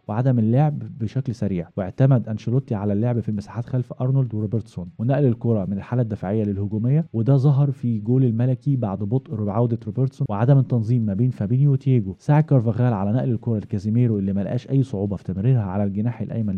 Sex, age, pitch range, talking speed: male, 20-39, 105-135 Hz, 180 wpm